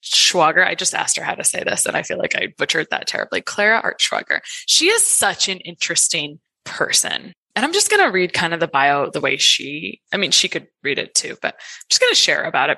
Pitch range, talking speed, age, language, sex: 160-220 Hz, 250 wpm, 20-39, English, female